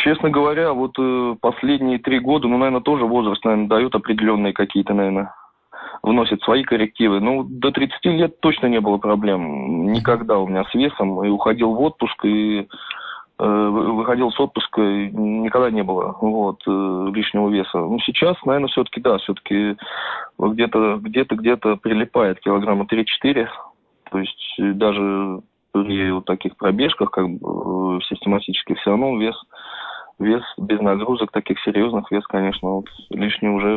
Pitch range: 95-115 Hz